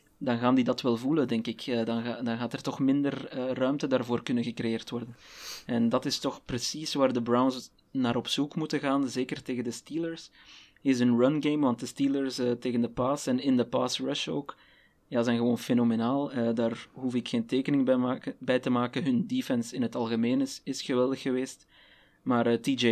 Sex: male